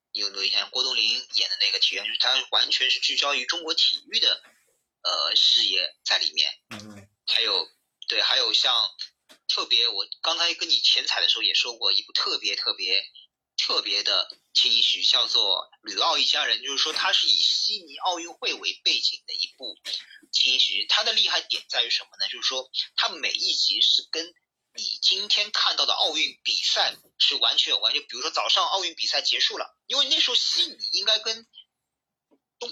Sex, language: male, Chinese